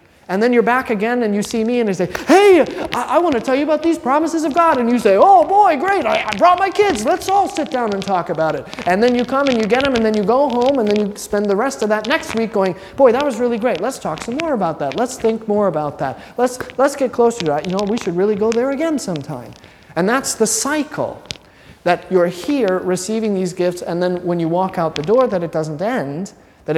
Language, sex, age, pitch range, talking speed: English, male, 30-49, 160-235 Hz, 270 wpm